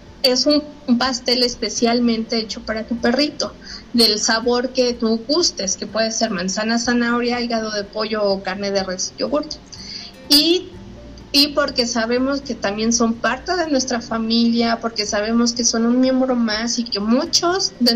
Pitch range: 220-260 Hz